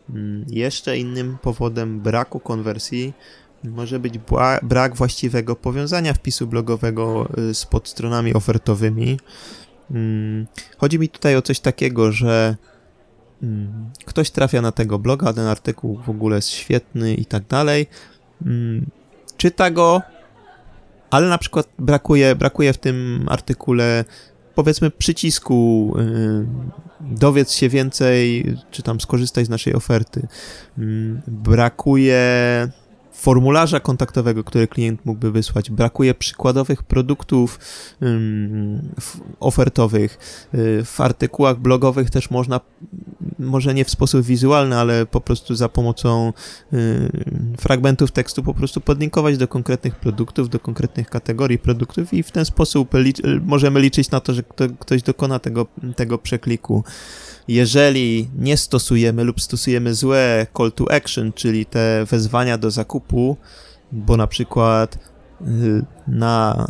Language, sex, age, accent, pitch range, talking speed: Polish, male, 20-39, native, 115-135 Hz, 115 wpm